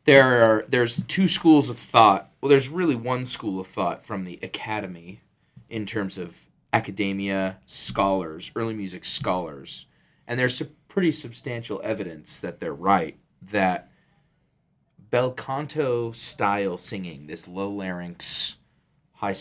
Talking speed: 135 wpm